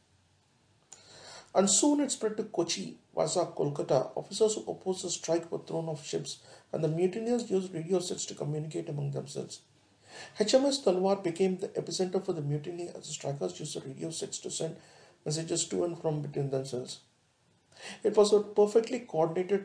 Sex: male